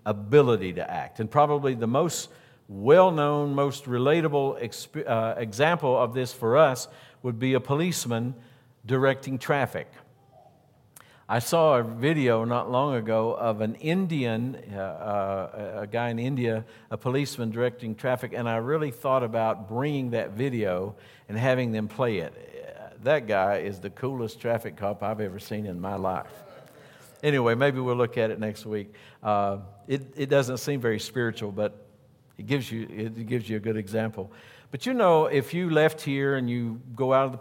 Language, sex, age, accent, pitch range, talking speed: English, male, 60-79, American, 110-135 Hz, 170 wpm